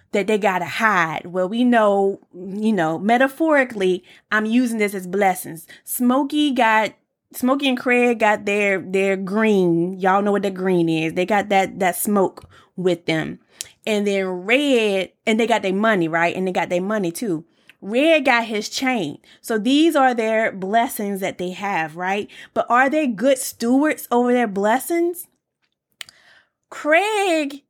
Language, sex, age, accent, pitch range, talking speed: English, female, 20-39, American, 195-270 Hz, 160 wpm